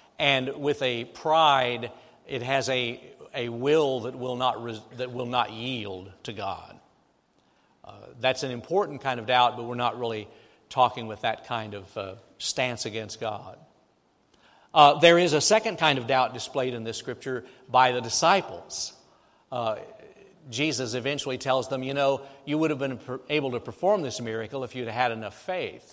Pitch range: 120-145 Hz